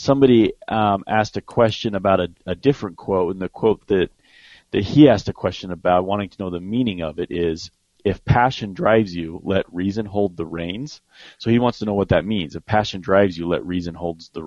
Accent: American